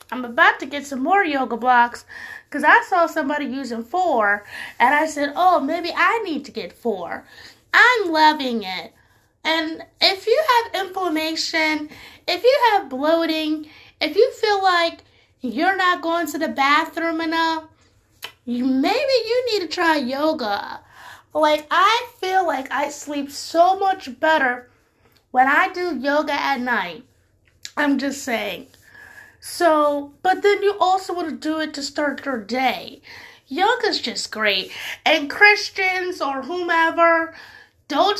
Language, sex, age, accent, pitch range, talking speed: English, female, 30-49, American, 285-395 Hz, 145 wpm